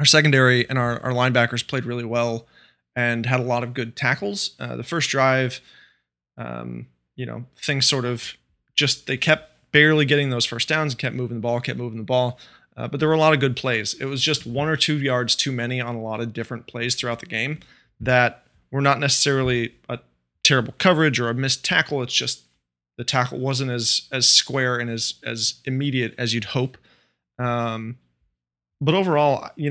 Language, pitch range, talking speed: English, 115-135 Hz, 200 wpm